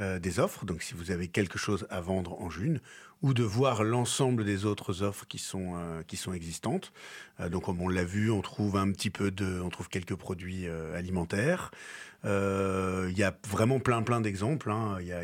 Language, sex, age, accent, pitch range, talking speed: French, male, 30-49, French, 95-120 Hz, 215 wpm